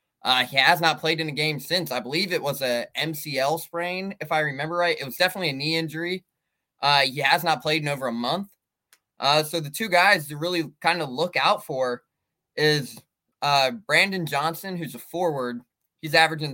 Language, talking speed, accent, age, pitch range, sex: English, 205 wpm, American, 20-39, 135-165 Hz, male